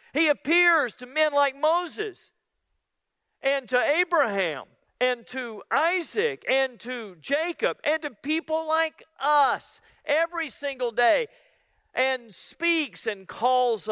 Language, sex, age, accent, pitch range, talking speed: English, male, 50-69, American, 215-315 Hz, 115 wpm